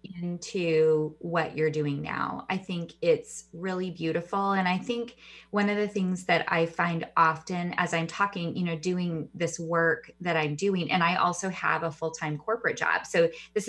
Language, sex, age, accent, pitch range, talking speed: English, female, 20-39, American, 160-185 Hz, 185 wpm